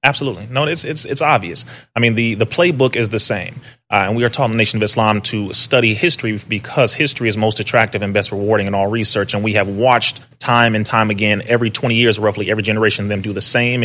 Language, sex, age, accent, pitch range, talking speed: English, male, 30-49, American, 105-120 Hz, 245 wpm